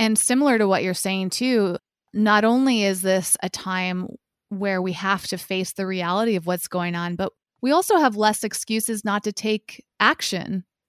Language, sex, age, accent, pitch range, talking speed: English, female, 20-39, American, 185-215 Hz, 185 wpm